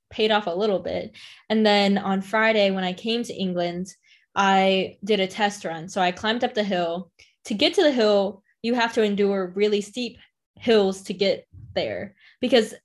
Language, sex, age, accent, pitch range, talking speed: English, female, 10-29, American, 190-220 Hz, 190 wpm